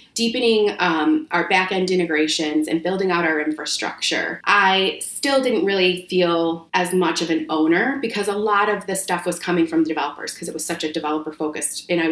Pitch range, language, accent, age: 165-205 Hz, English, American, 30-49